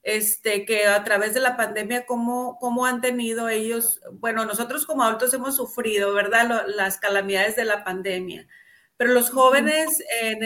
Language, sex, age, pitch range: Spanish, female, 40-59, 205-245 Hz